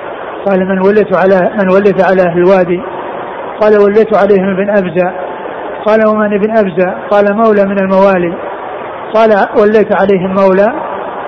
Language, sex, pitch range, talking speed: Arabic, male, 190-215 Hz, 135 wpm